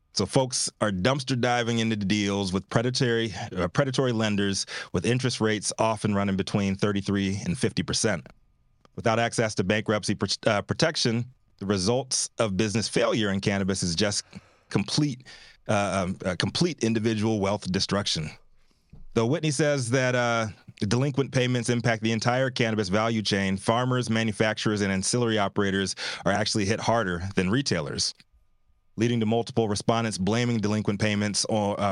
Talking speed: 135 wpm